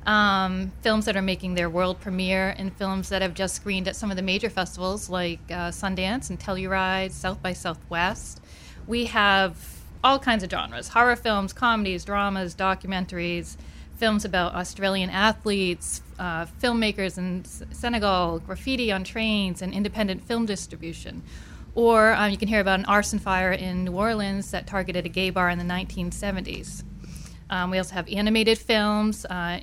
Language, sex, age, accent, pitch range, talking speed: English, female, 40-59, American, 185-215 Hz, 165 wpm